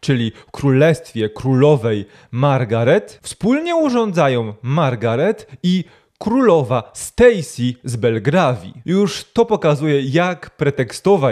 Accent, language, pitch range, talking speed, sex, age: native, Polish, 130-205 Hz, 90 wpm, male, 20-39